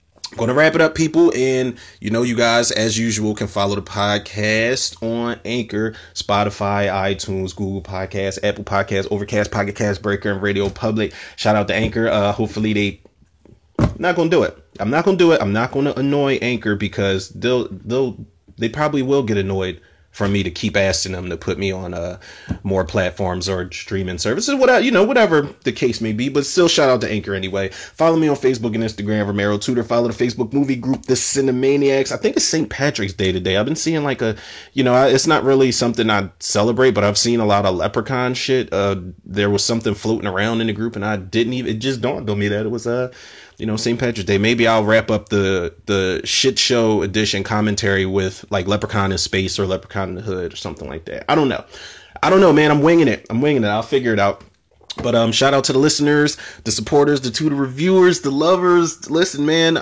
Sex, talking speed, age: male, 225 wpm, 30-49